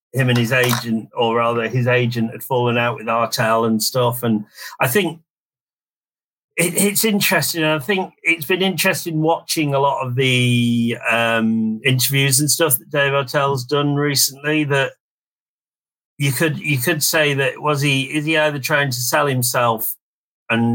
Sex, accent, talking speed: male, British, 165 wpm